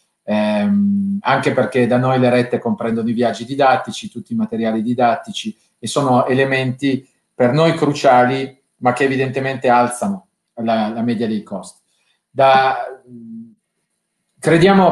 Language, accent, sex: Italian, native, male